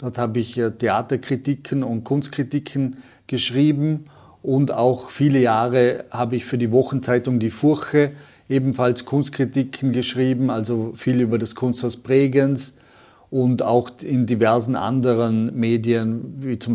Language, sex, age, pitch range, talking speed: German, male, 40-59, 125-140 Hz, 125 wpm